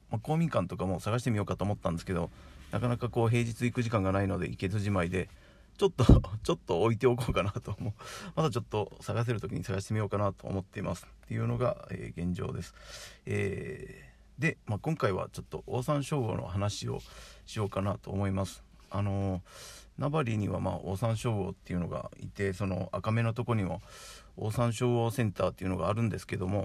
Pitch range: 95-120 Hz